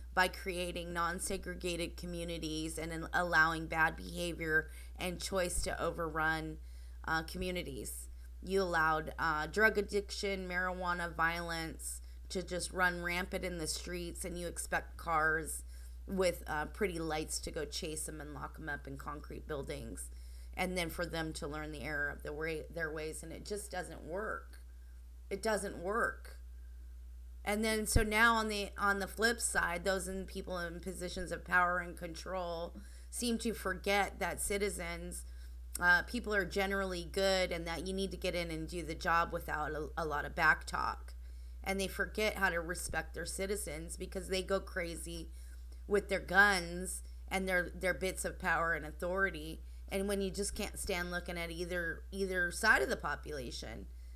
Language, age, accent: English, 30-49, American